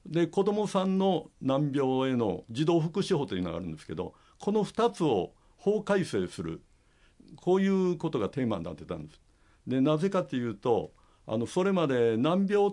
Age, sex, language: 60-79, male, Japanese